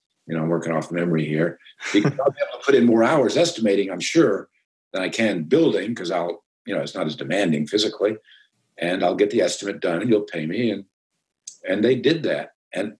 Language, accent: English, American